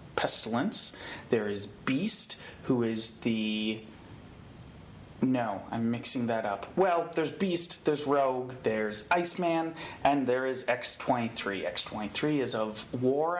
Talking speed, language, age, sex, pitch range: 120 wpm, English, 30-49, male, 120-160 Hz